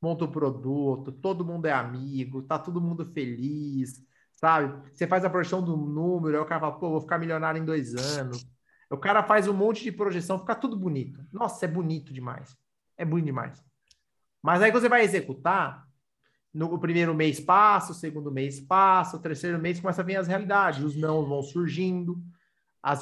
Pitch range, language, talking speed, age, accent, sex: 145-185 Hz, Portuguese, 190 wpm, 30-49, Brazilian, male